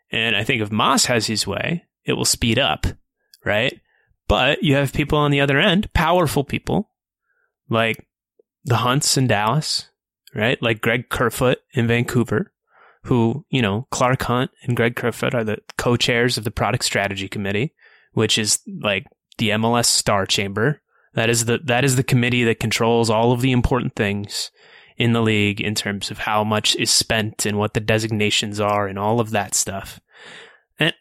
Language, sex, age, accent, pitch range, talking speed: English, male, 20-39, American, 110-140 Hz, 180 wpm